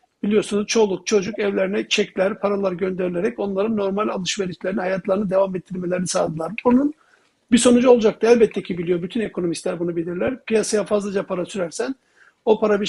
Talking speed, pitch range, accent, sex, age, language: 150 wpm, 190-220 Hz, native, male, 60-79, Turkish